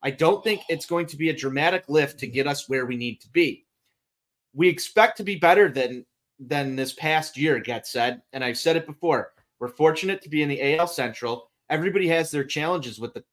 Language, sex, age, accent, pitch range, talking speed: English, male, 30-49, American, 130-170 Hz, 220 wpm